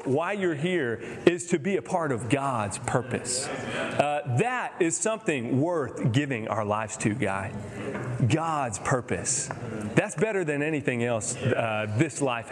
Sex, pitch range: male, 120-175 Hz